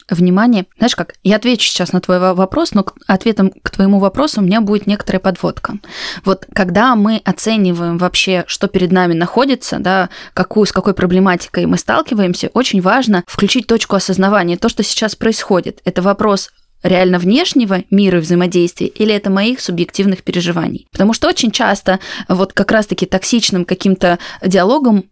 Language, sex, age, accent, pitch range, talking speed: Russian, female, 20-39, native, 190-235 Hz, 155 wpm